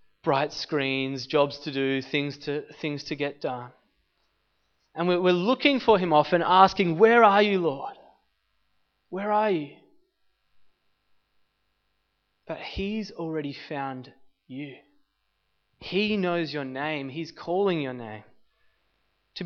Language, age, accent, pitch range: English, 20-39, Australian, 145-180 Hz